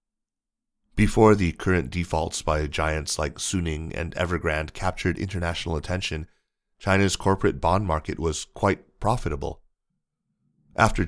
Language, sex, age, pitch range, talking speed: English, male, 30-49, 80-100 Hz, 115 wpm